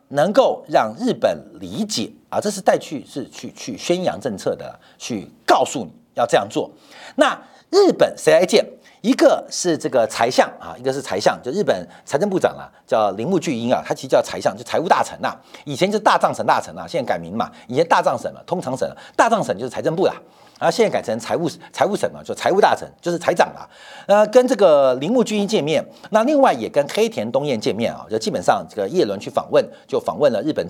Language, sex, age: Chinese, male, 50-69